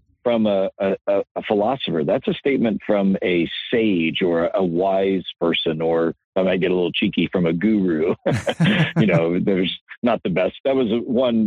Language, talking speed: English, 175 wpm